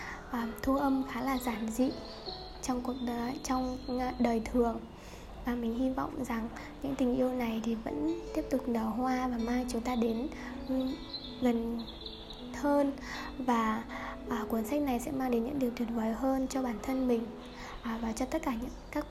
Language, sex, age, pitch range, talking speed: Vietnamese, female, 10-29, 235-265 Hz, 185 wpm